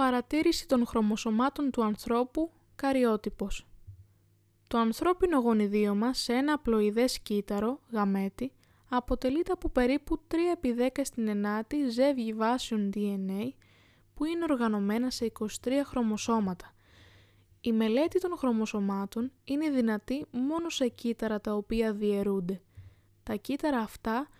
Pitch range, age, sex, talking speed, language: 210-265 Hz, 10-29, female, 110 wpm, Greek